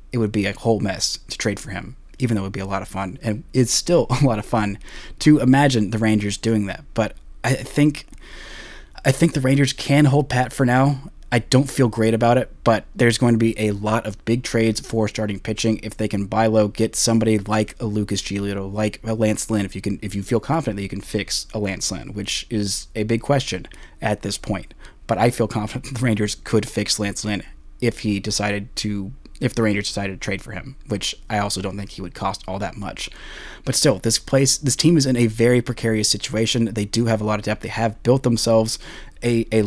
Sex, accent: male, American